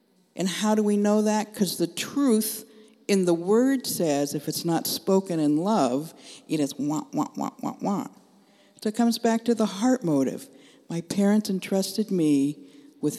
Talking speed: 180 wpm